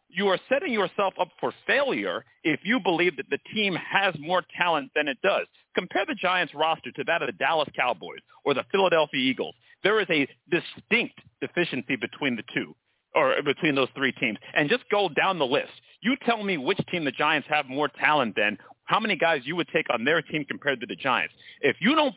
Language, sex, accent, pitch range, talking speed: English, male, American, 150-225 Hz, 215 wpm